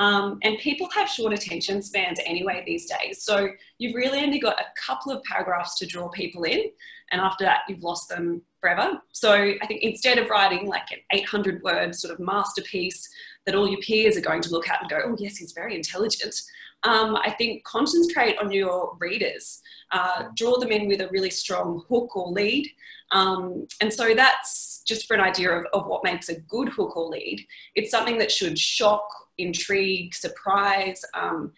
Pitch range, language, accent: 185-245 Hz, English, Australian